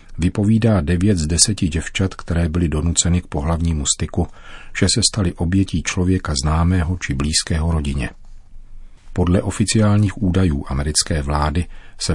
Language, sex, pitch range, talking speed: Czech, male, 80-95 Hz, 130 wpm